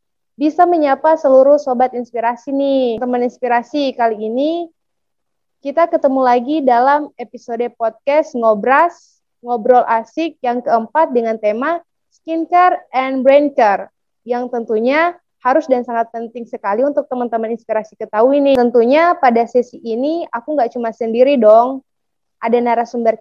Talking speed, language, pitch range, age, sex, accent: 125 wpm, Indonesian, 230-285 Hz, 20-39, female, native